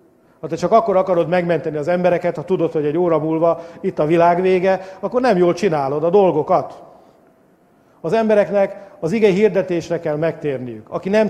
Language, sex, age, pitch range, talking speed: English, male, 50-69, 155-190 Hz, 175 wpm